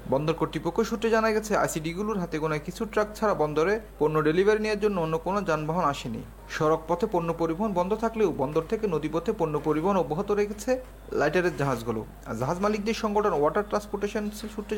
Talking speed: 165 wpm